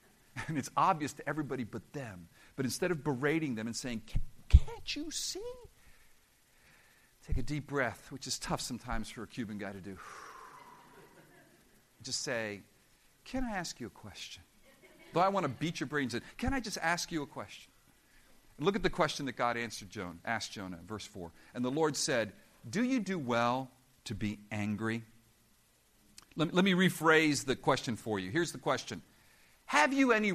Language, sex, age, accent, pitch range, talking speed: English, male, 50-69, American, 130-205 Hz, 185 wpm